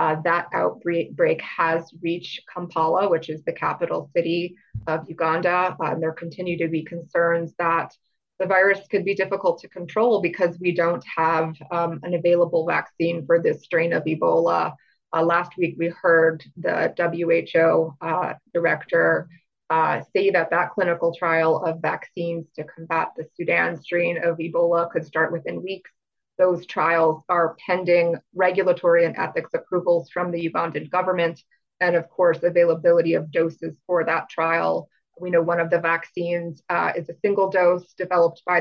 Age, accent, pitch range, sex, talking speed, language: 20-39, American, 165-185 Hz, female, 160 wpm, English